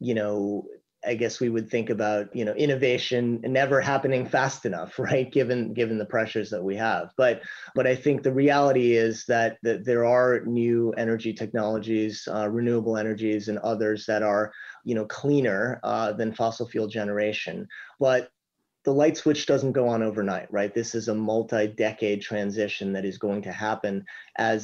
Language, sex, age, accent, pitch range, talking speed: English, male, 30-49, American, 105-120 Hz, 175 wpm